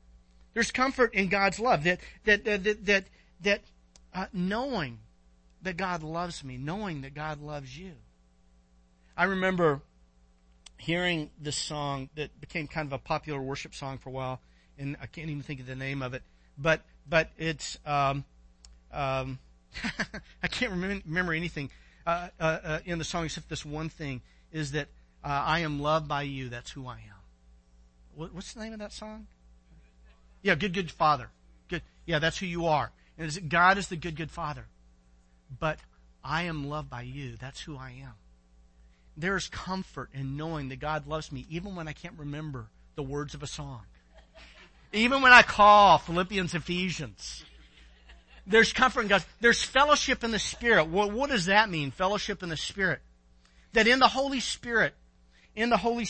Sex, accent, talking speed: male, American, 175 wpm